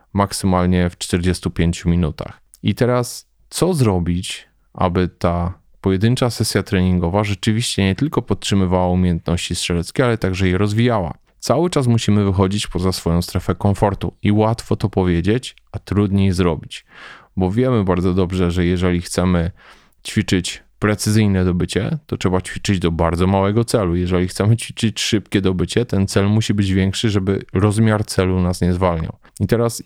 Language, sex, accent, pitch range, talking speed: Polish, male, native, 90-105 Hz, 145 wpm